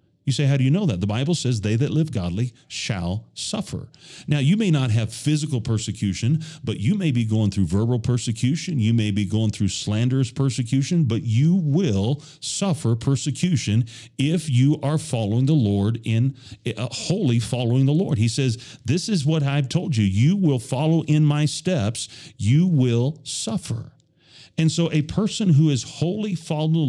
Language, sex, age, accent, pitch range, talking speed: English, male, 40-59, American, 105-150 Hz, 180 wpm